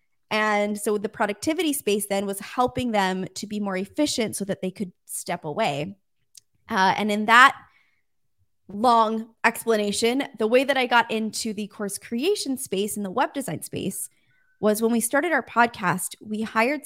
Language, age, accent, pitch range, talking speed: English, 20-39, American, 195-245 Hz, 170 wpm